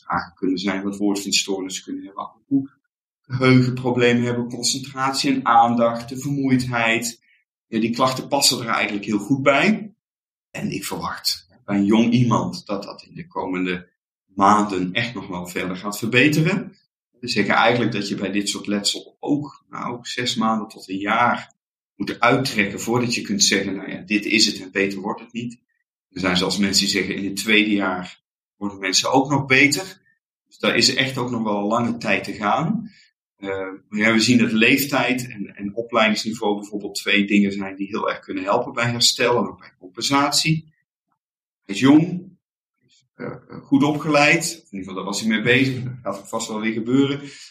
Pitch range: 100-130 Hz